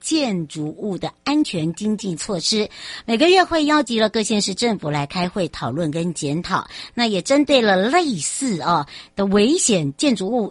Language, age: Chinese, 60-79